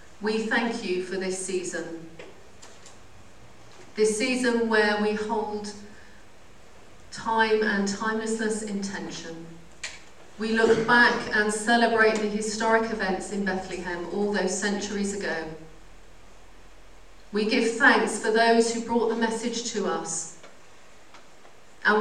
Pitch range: 180-225 Hz